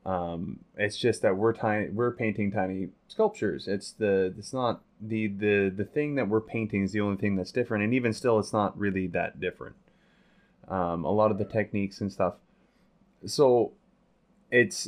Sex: male